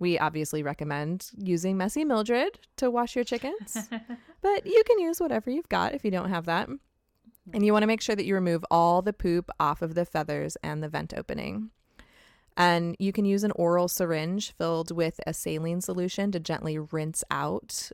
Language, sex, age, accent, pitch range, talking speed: English, female, 20-39, American, 155-200 Hz, 195 wpm